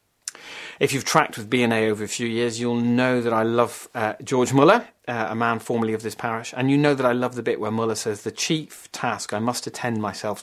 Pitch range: 100-120 Hz